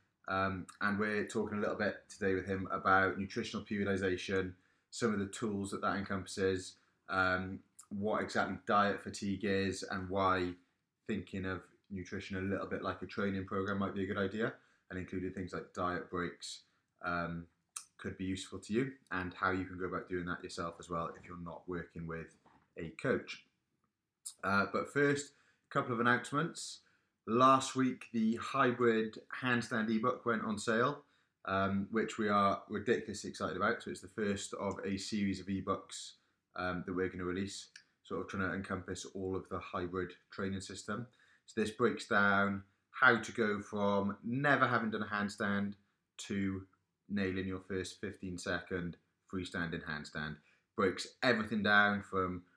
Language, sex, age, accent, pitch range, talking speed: English, male, 20-39, British, 95-105 Hz, 170 wpm